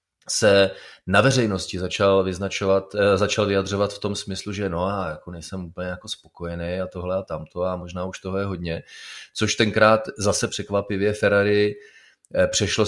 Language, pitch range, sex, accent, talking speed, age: Czech, 95-105 Hz, male, native, 155 wpm, 30-49